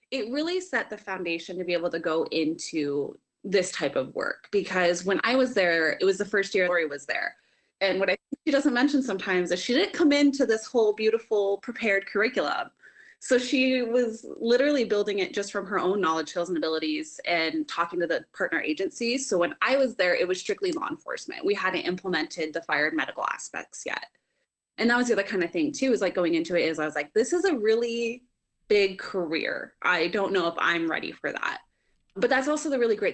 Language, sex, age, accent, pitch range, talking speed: English, female, 20-39, American, 170-255 Hz, 225 wpm